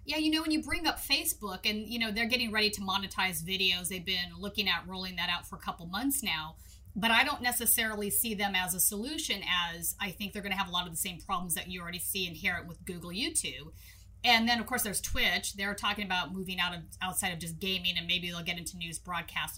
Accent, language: American, English